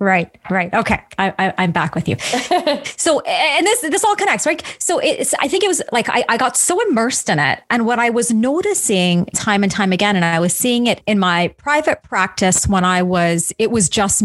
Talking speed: 220 wpm